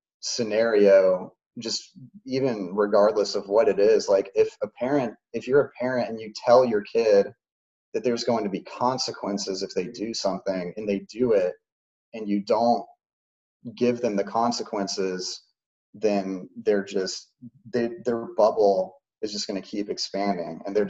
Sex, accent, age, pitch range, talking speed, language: male, American, 30-49, 100-120 Hz, 160 wpm, English